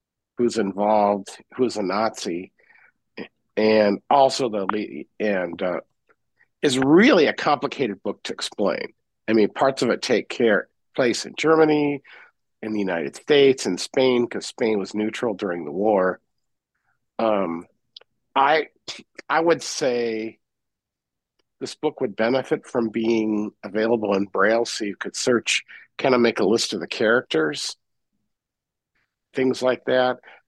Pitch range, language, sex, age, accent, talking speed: 105-130 Hz, English, male, 50-69, American, 140 wpm